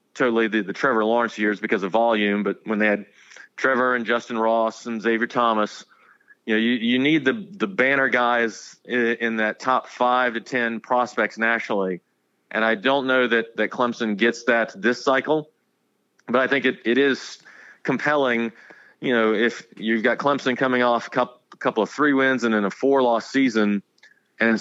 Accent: American